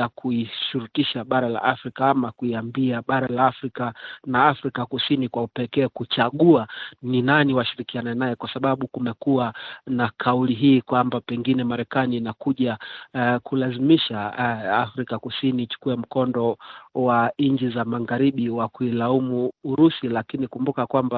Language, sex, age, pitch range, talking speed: Swahili, male, 40-59, 115-130 Hz, 135 wpm